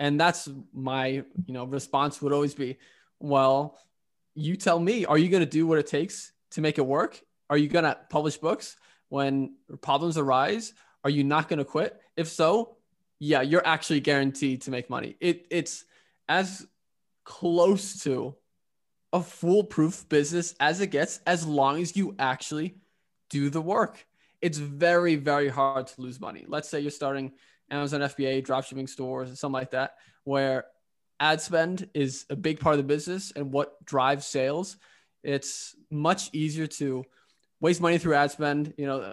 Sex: male